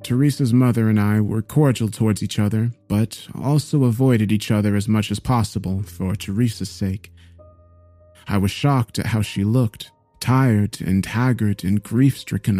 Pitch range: 100-125 Hz